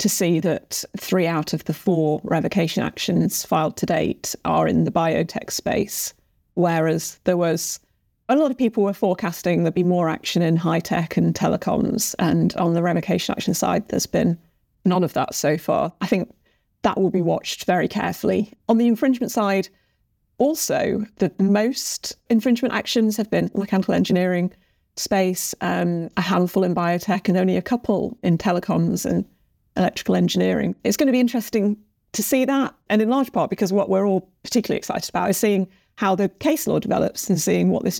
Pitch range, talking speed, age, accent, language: 175-215 Hz, 180 wpm, 30-49, British, English